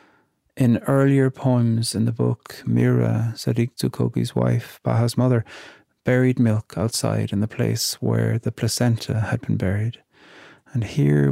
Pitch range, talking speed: 105-125 Hz, 140 wpm